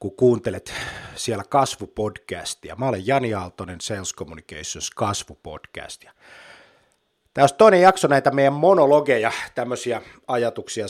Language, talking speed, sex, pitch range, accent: Finnish, 110 wpm, male, 100-140 Hz, native